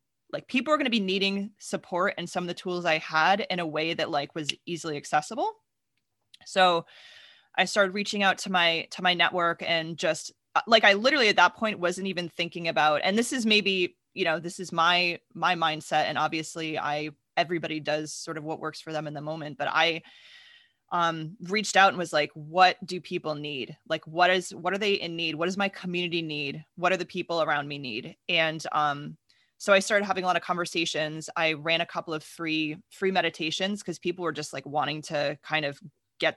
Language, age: English, 20-39